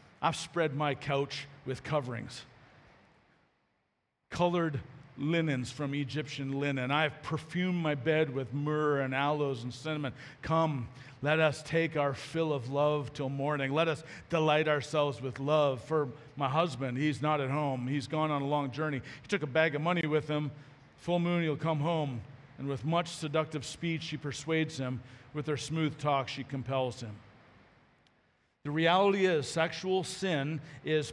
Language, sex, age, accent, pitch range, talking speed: English, male, 40-59, American, 145-185 Hz, 160 wpm